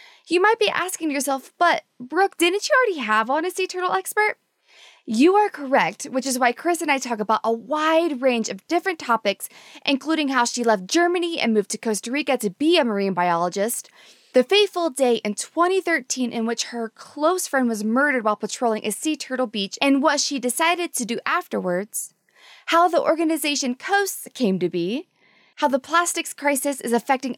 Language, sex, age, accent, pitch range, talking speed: English, female, 20-39, American, 225-320 Hz, 190 wpm